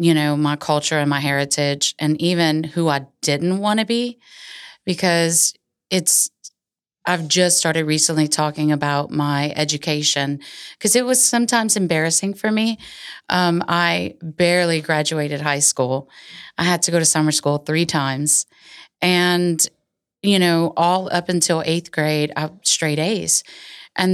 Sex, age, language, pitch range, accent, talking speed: female, 30-49, English, 155-180 Hz, American, 145 wpm